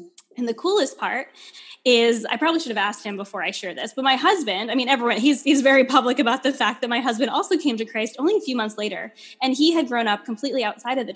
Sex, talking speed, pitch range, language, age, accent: female, 265 wpm, 210-250 Hz, English, 10-29, American